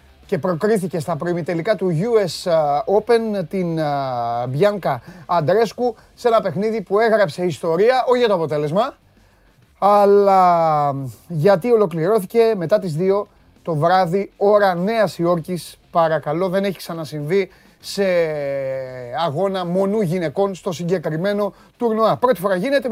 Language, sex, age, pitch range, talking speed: Greek, male, 30-49, 150-200 Hz, 120 wpm